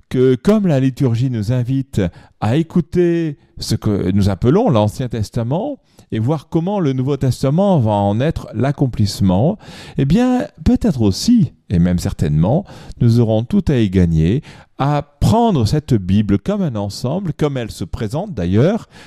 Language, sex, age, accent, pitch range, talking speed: French, male, 40-59, French, 100-155 Hz, 155 wpm